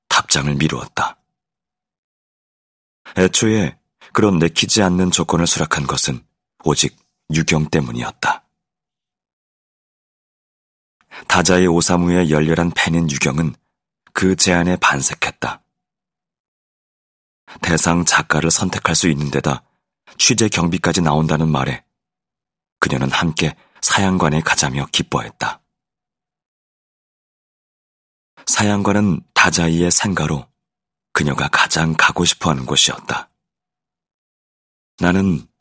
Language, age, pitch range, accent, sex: Korean, 30-49, 75-90 Hz, native, male